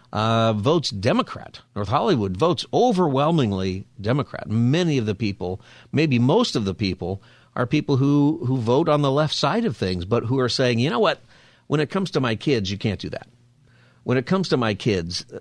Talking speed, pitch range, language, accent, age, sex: 200 wpm, 95-130 Hz, English, American, 50-69, male